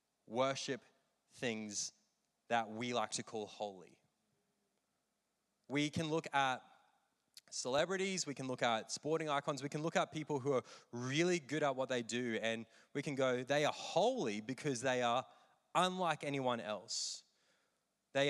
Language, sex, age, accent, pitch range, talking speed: English, male, 20-39, Australian, 120-150 Hz, 150 wpm